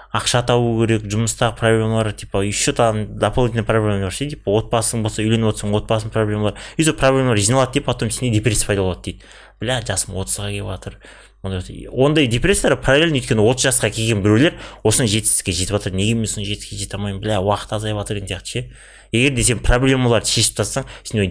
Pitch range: 100-125 Hz